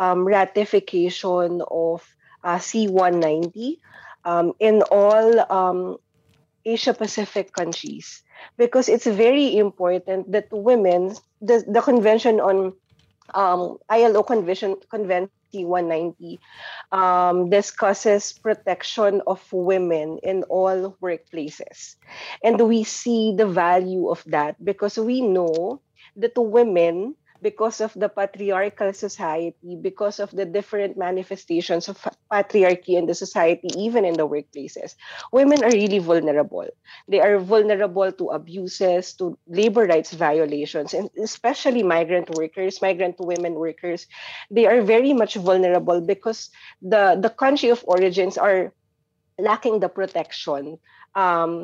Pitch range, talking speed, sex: 175-215 Hz, 120 wpm, female